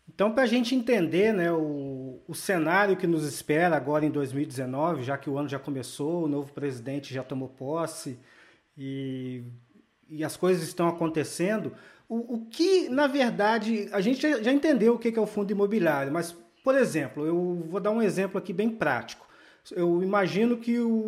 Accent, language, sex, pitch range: Brazilian, Portuguese, male, 160-225 Hz